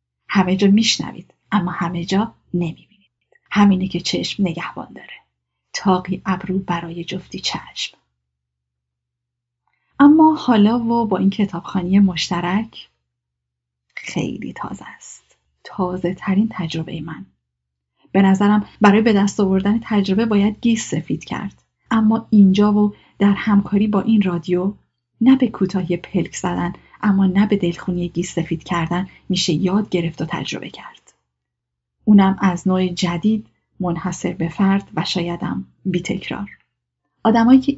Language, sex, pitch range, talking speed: Persian, female, 175-210 Hz, 120 wpm